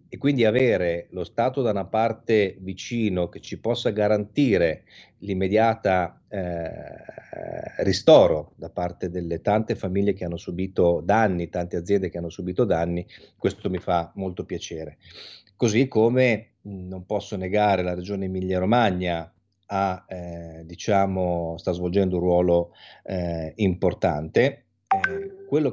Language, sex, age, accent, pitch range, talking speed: Italian, male, 30-49, native, 90-105 Hz, 130 wpm